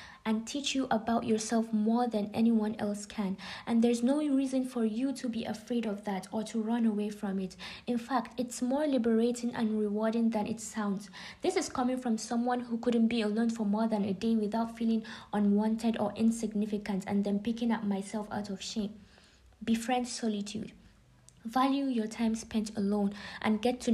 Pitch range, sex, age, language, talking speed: 210-240 Hz, female, 20-39, English, 185 wpm